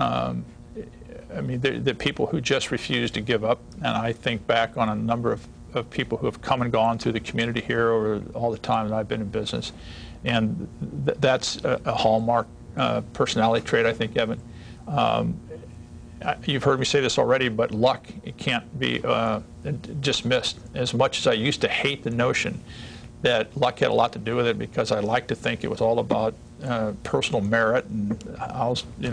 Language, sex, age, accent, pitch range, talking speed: English, male, 50-69, American, 110-125 Hz, 205 wpm